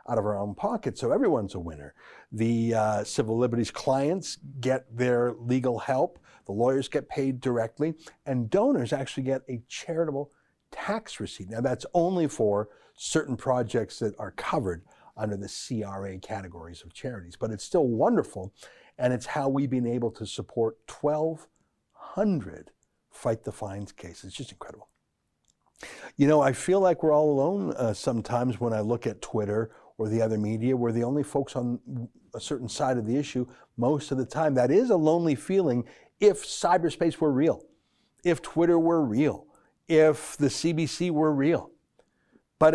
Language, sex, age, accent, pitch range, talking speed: English, male, 60-79, American, 115-155 Hz, 165 wpm